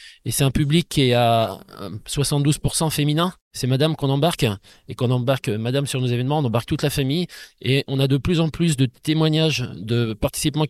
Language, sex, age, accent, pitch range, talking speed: French, male, 20-39, French, 130-150 Hz, 200 wpm